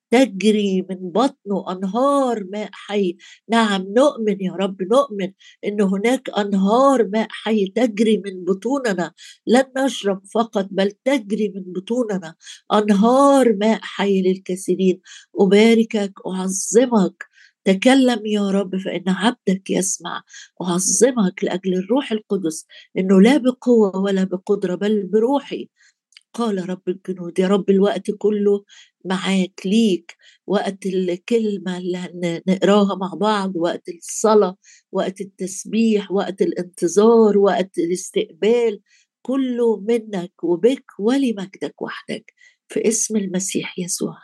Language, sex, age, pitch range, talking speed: Arabic, female, 50-69, 185-225 Hz, 110 wpm